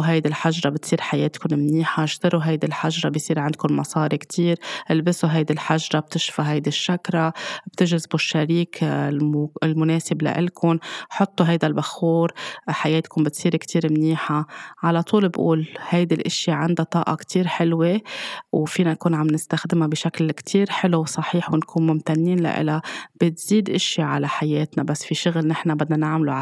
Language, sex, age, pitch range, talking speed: Arabic, female, 20-39, 155-170 Hz, 135 wpm